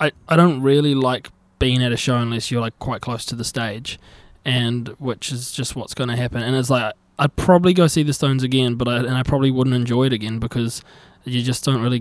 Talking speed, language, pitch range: 240 wpm, English, 115-135 Hz